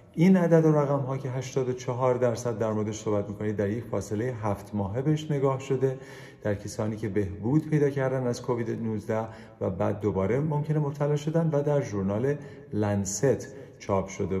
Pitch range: 105-145 Hz